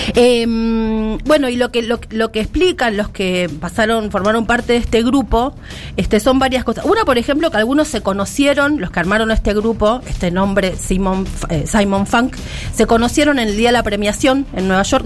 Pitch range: 195-255 Hz